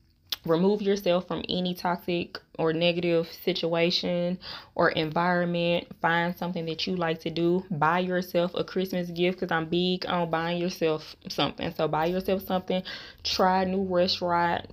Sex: female